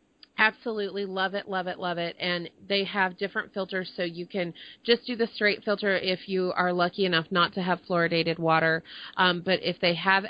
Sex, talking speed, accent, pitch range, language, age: female, 205 wpm, American, 170-200 Hz, English, 30-49